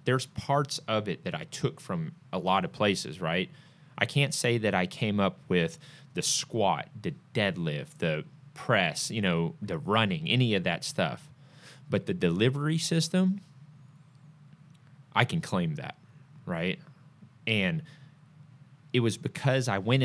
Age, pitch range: 30-49, 115-150 Hz